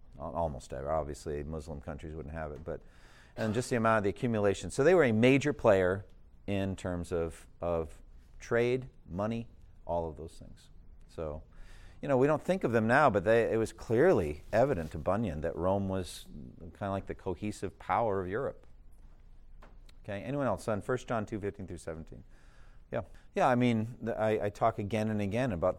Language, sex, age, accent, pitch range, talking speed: English, male, 50-69, American, 85-110 Hz, 190 wpm